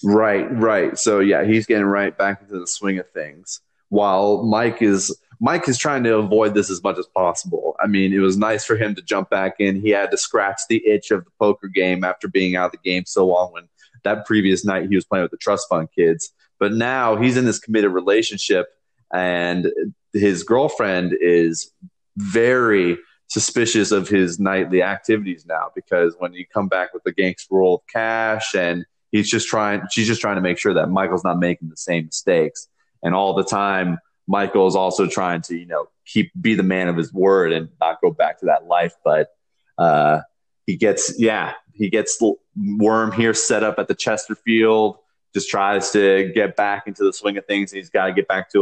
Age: 20-39